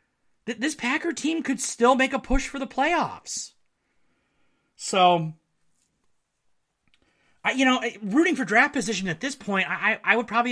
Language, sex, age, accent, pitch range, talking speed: English, male, 30-49, American, 160-220 Hz, 150 wpm